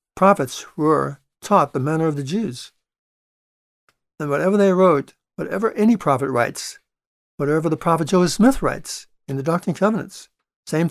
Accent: American